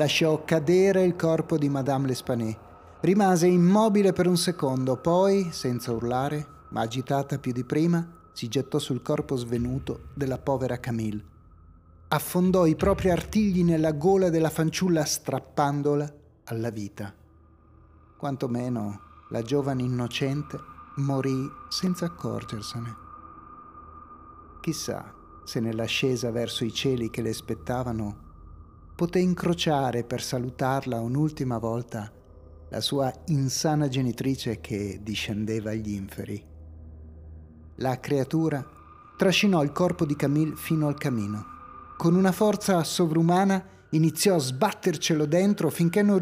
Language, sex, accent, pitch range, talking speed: Italian, male, native, 115-170 Hz, 115 wpm